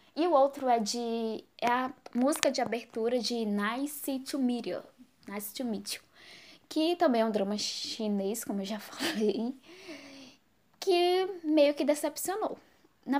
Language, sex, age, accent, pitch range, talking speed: Portuguese, female, 10-29, Brazilian, 205-275 Hz, 140 wpm